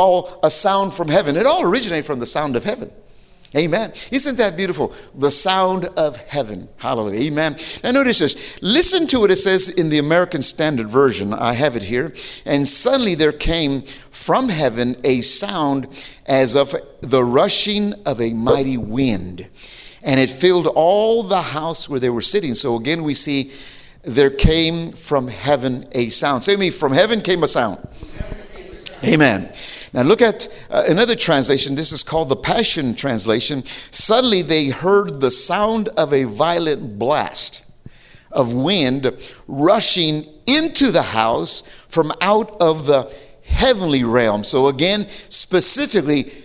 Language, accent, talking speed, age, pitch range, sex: English, American, 150 wpm, 50-69, 135-190 Hz, male